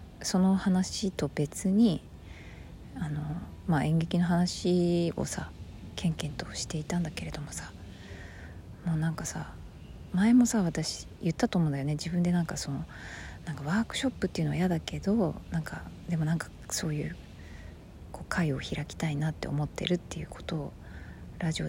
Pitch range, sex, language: 140-185 Hz, female, Japanese